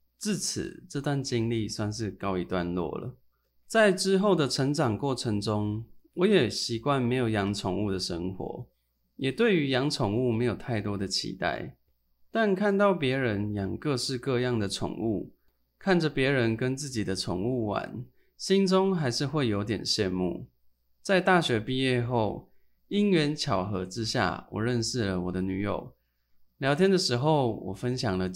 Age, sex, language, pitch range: 20-39, male, Chinese, 95-140 Hz